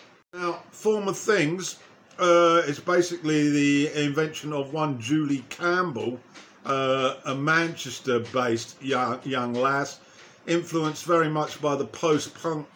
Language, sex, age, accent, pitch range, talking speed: English, male, 50-69, British, 145-170 Hz, 120 wpm